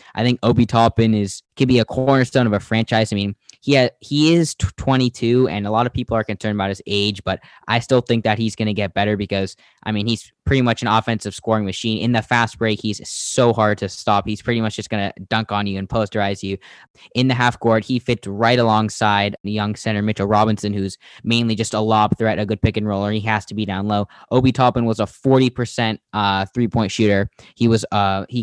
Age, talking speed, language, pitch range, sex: 10-29, 235 wpm, English, 105-120 Hz, male